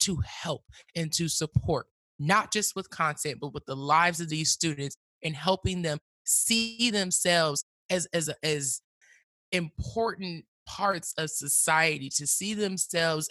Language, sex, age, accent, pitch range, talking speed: English, male, 20-39, American, 150-180 Hz, 140 wpm